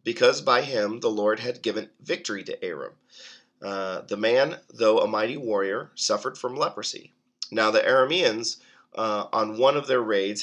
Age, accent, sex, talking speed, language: 30-49, American, male, 165 wpm, English